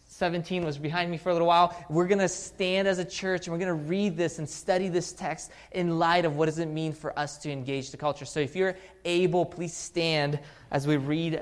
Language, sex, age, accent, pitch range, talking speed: English, male, 20-39, American, 130-170 Hz, 245 wpm